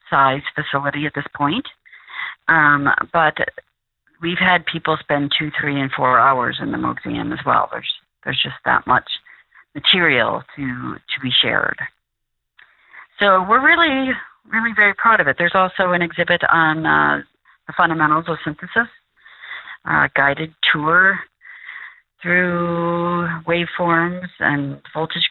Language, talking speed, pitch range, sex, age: English, 135 wpm, 140-175 Hz, female, 40-59